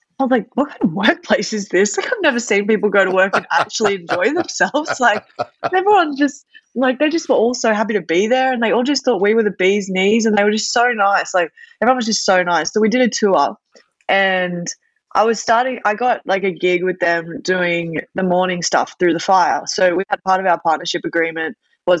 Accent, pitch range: Australian, 170-220 Hz